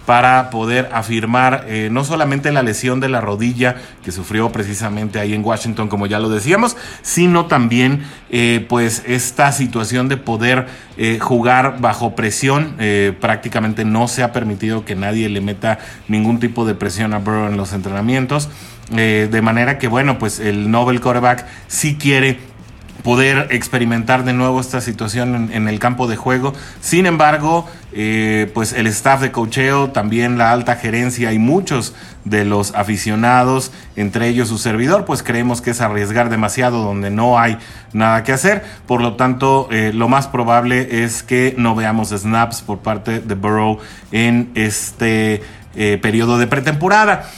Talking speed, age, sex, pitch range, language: 165 wpm, 30-49, male, 110-130 Hz, Spanish